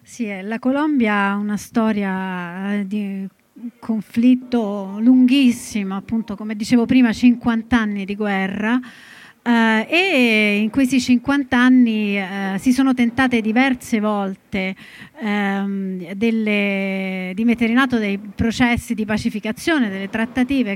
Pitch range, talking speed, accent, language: 200-245 Hz, 115 wpm, native, Italian